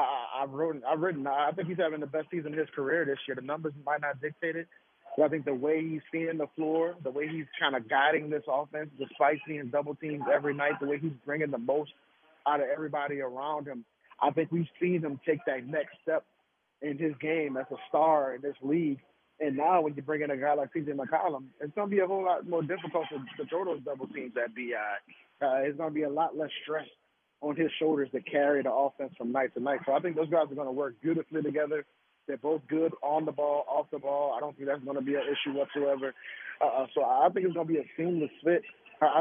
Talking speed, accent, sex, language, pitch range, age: 250 wpm, American, male, English, 140-160 Hz, 30-49